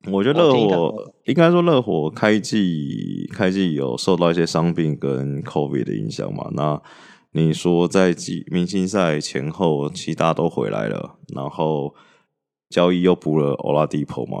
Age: 20-39